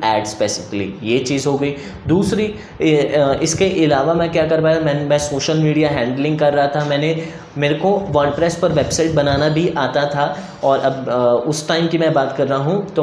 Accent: native